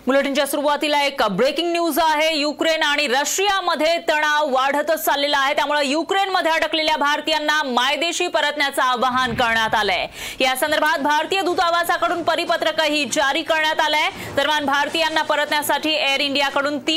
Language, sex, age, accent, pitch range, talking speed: Marathi, female, 30-49, native, 270-315 Hz, 80 wpm